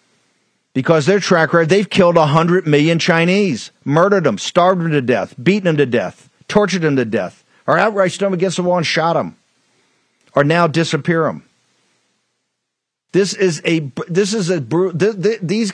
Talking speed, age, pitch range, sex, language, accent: 170 wpm, 50-69, 145-180 Hz, male, English, American